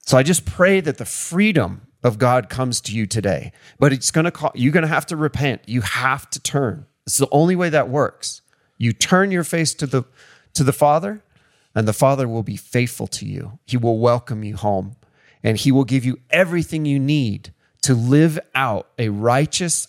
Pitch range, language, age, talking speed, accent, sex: 115-160 Hz, English, 30-49, 210 wpm, American, male